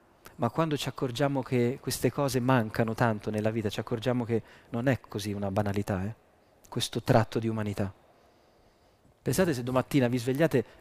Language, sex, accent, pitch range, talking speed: Italian, male, native, 115-135 Hz, 160 wpm